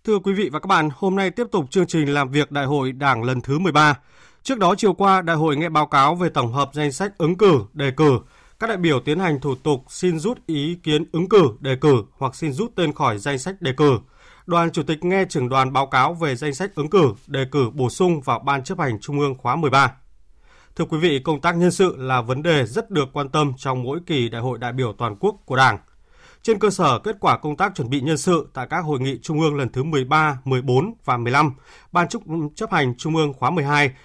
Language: Vietnamese